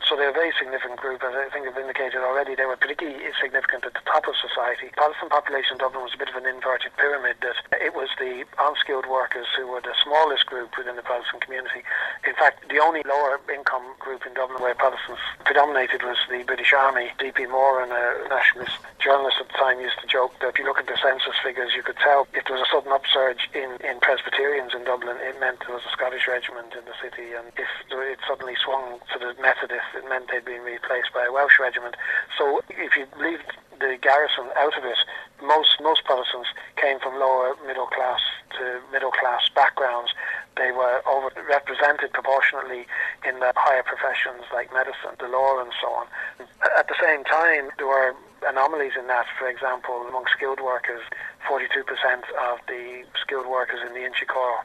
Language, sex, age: English, male, 40-59